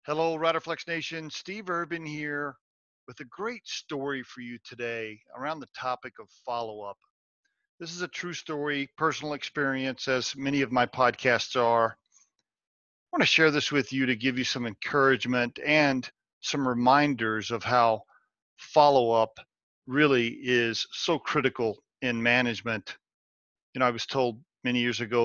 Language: English